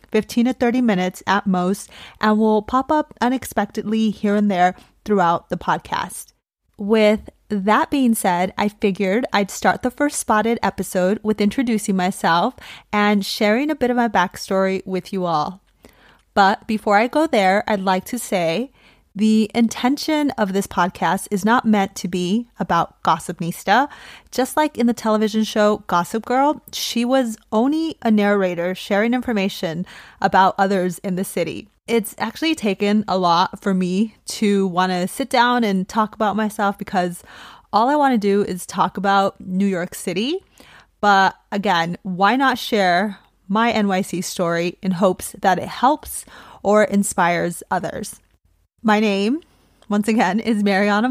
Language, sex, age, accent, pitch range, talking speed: English, female, 30-49, American, 190-230 Hz, 155 wpm